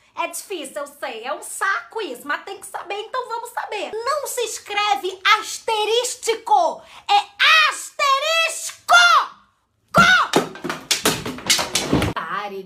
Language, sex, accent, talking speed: English, female, Brazilian, 105 wpm